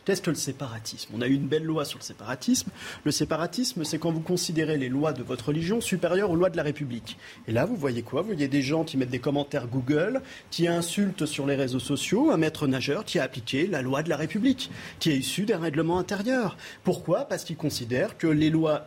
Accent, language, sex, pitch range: French, French, male, 145-185 Hz